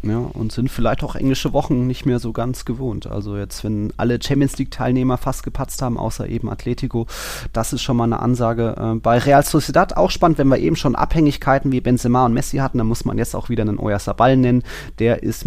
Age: 30-49